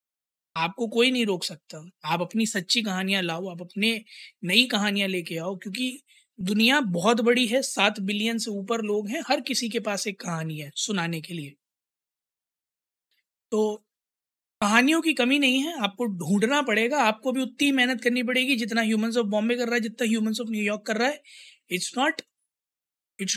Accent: native